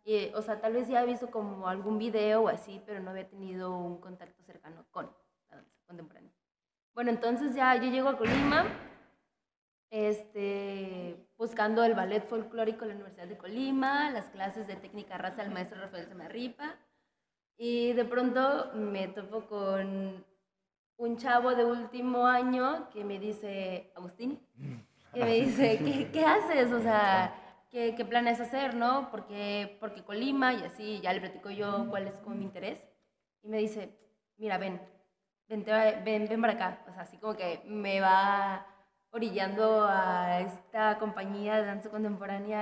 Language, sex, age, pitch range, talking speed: Spanish, female, 20-39, 195-240 Hz, 165 wpm